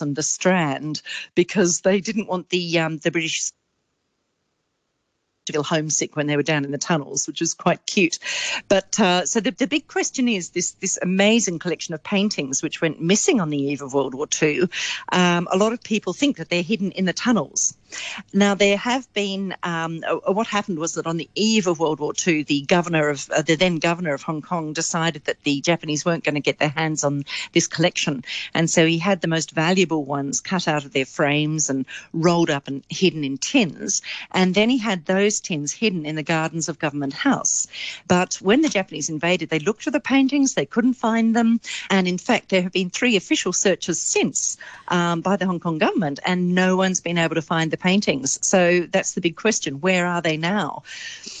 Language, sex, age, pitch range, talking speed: English, female, 50-69, 155-195 Hz, 210 wpm